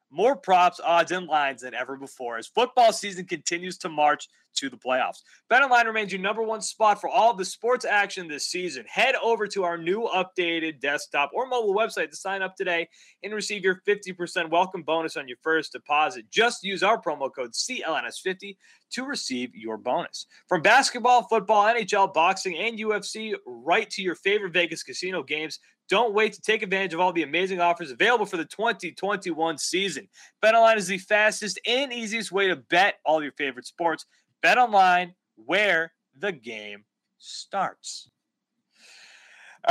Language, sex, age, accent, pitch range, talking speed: English, male, 30-49, American, 160-225 Hz, 175 wpm